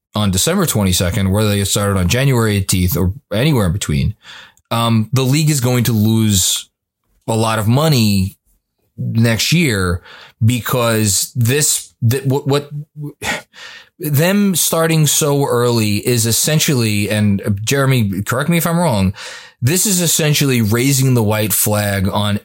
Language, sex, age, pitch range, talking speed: English, male, 20-39, 105-140 Hz, 140 wpm